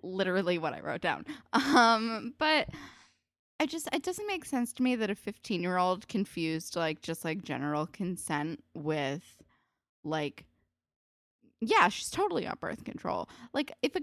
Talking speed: 160 wpm